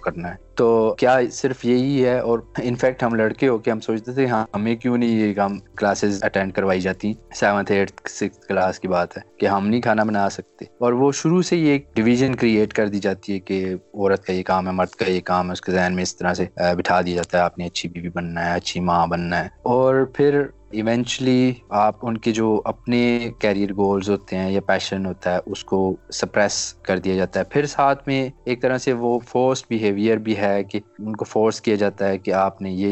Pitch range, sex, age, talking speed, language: 95-115 Hz, male, 20-39, 165 wpm, Urdu